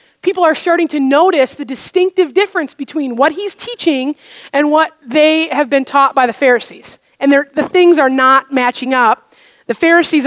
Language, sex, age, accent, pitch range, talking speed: English, female, 30-49, American, 255-315 Hz, 175 wpm